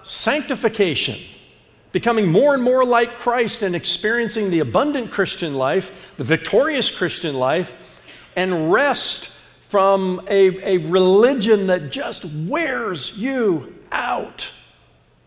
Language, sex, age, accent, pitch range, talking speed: English, male, 50-69, American, 130-200 Hz, 110 wpm